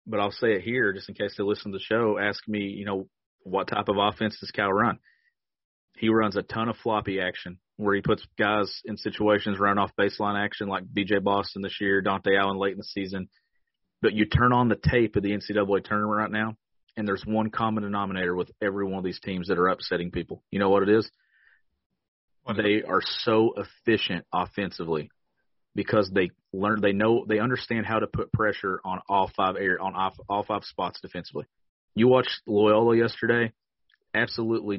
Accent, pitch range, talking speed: American, 100-115 Hz, 200 wpm